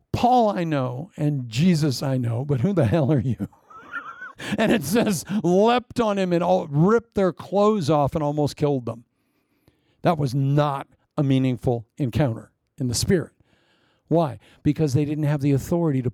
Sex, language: male, English